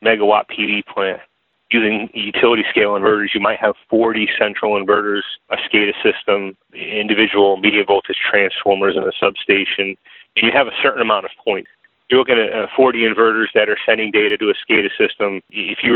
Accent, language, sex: American, English, male